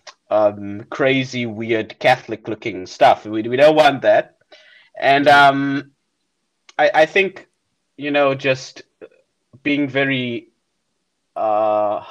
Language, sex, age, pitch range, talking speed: English, male, 30-49, 105-140 Hz, 110 wpm